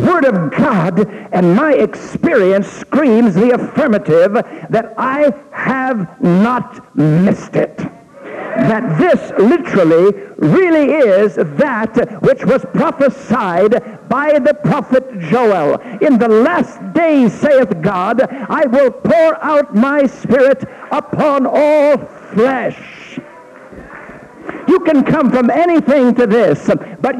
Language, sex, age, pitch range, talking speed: English, male, 60-79, 225-290 Hz, 115 wpm